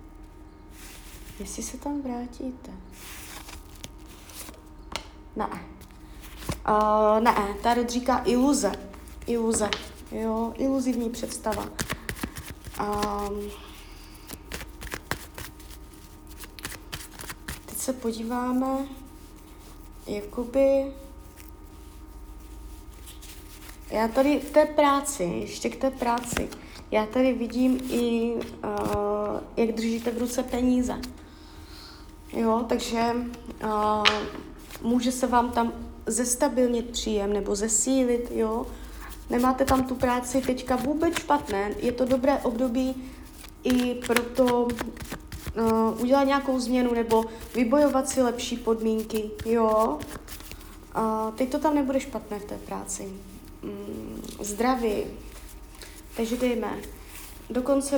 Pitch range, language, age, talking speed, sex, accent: 200-255 Hz, Czech, 30-49, 90 wpm, female, native